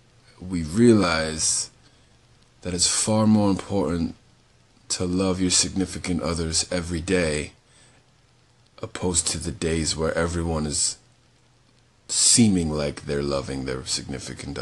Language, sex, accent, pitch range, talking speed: English, male, American, 80-100 Hz, 110 wpm